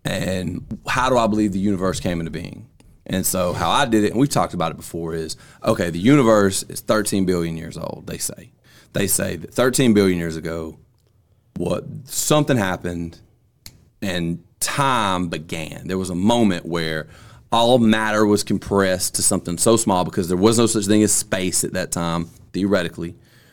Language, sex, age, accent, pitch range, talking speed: English, male, 30-49, American, 90-115 Hz, 180 wpm